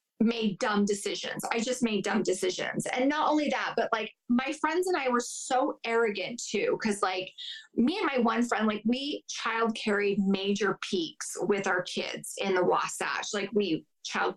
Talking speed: 185 wpm